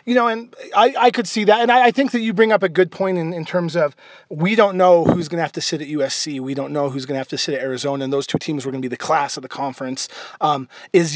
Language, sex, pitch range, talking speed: English, male, 155-200 Hz, 325 wpm